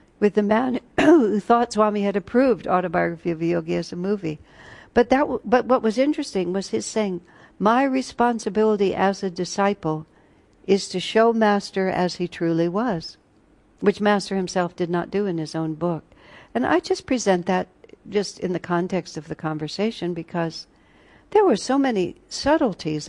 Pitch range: 175-220 Hz